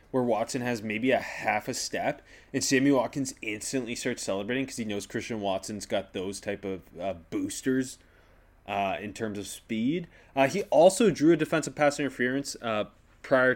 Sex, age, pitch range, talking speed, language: male, 20-39, 110-145 Hz, 175 wpm, English